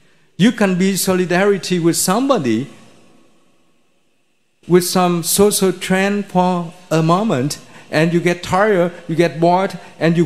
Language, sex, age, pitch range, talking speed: Vietnamese, male, 50-69, 160-195 Hz, 130 wpm